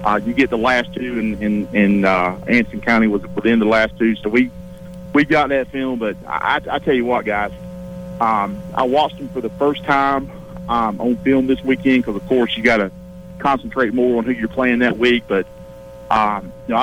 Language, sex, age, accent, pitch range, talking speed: English, male, 50-69, American, 105-130 Hz, 220 wpm